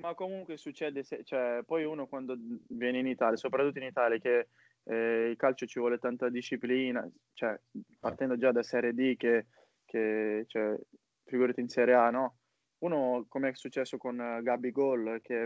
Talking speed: 175 wpm